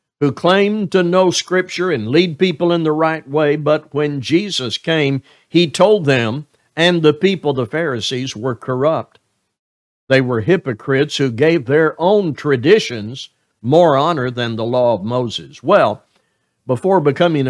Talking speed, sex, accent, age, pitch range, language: 150 wpm, male, American, 60-79, 135-175 Hz, English